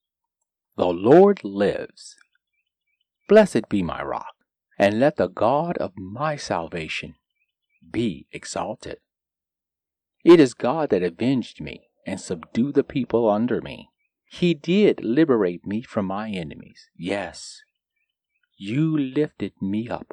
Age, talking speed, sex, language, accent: 40-59, 120 wpm, male, English, American